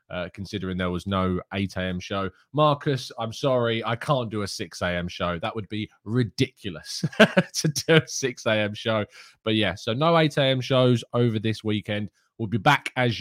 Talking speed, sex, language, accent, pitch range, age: 180 wpm, male, English, British, 100-130 Hz, 20-39